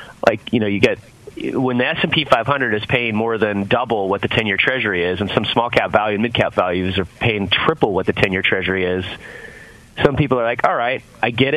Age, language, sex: 30-49, English, male